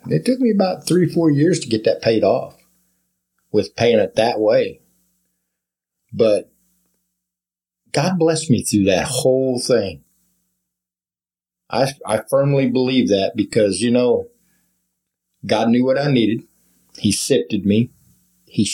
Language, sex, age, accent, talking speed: English, male, 50-69, American, 135 wpm